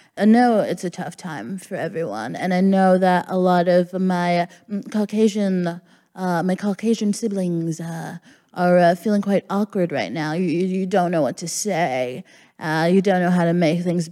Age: 20-39